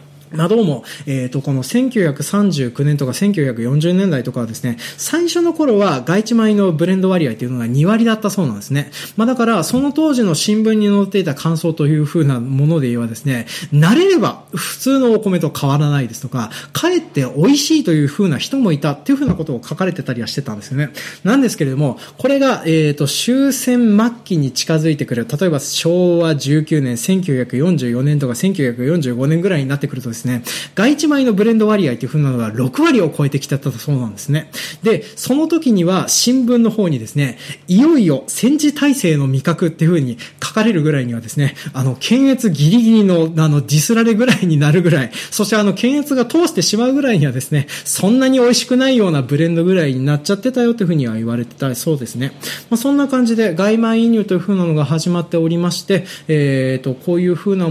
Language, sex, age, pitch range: Japanese, male, 20-39, 140-220 Hz